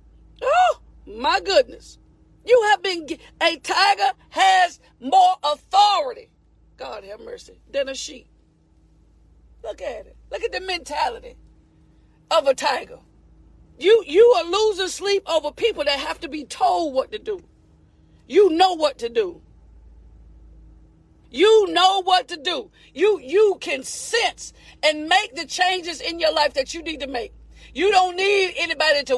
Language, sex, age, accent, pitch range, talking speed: English, female, 40-59, American, 300-400 Hz, 150 wpm